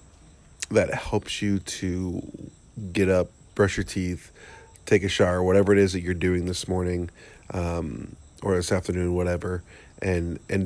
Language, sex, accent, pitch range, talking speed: English, male, American, 90-105 Hz, 150 wpm